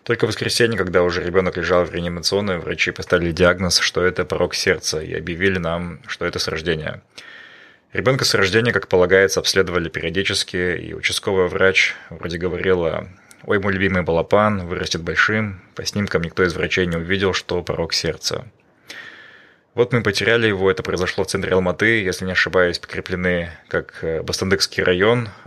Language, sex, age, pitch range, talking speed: Russian, male, 20-39, 90-100 Hz, 160 wpm